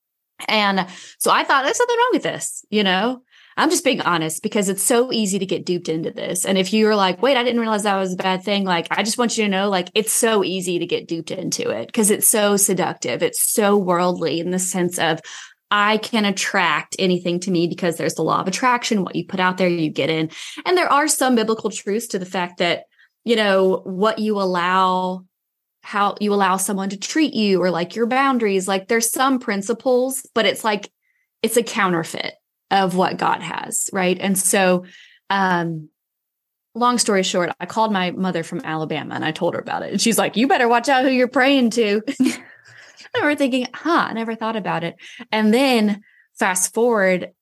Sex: female